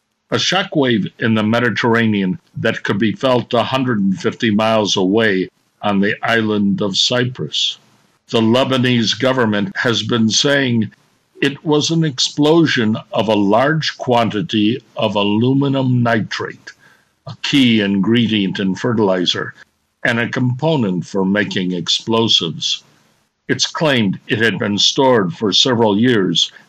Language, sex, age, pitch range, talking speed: English, male, 60-79, 105-130 Hz, 120 wpm